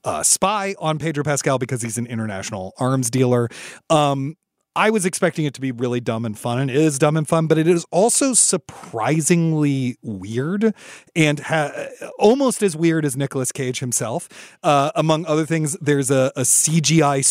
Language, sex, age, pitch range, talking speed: English, male, 30-49, 120-160 Hz, 175 wpm